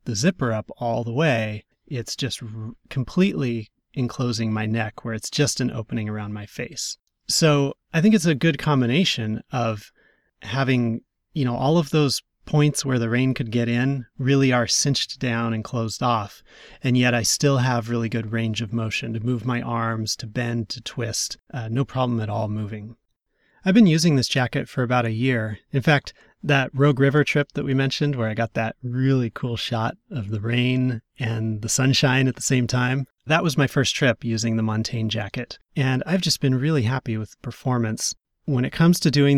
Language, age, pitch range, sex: English, 30-49, 115-140 Hz, male